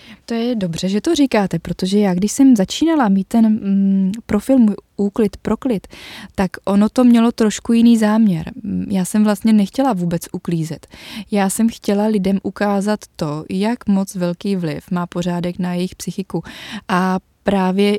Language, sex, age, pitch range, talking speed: Czech, female, 20-39, 185-215 Hz, 160 wpm